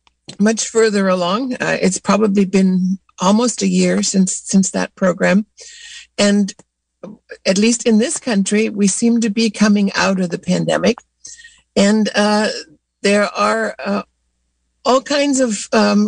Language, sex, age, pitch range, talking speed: English, female, 60-79, 185-225 Hz, 140 wpm